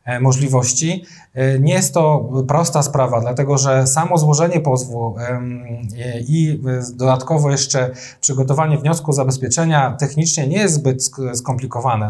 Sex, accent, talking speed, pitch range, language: male, native, 115 wpm, 130-150 Hz, Polish